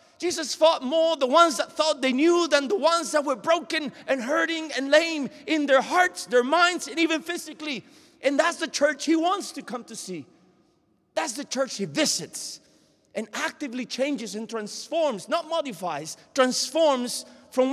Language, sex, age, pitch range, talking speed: English, male, 40-59, 190-300 Hz, 175 wpm